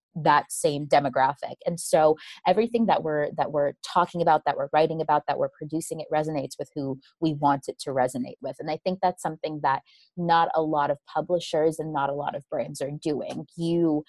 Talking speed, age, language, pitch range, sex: 205 wpm, 20-39, English, 155-180 Hz, female